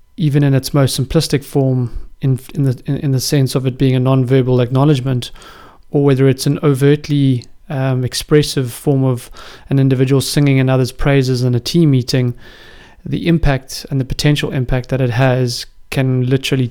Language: English